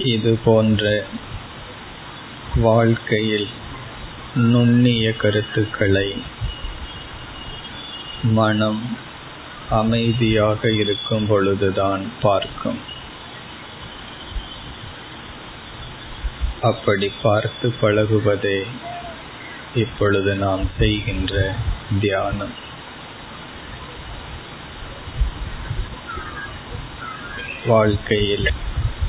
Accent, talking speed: native, 35 wpm